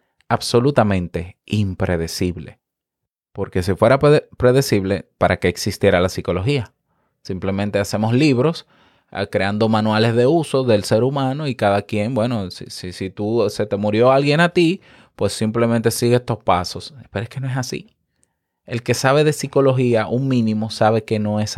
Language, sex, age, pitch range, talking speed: Spanish, male, 20-39, 100-135 Hz, 160 wpm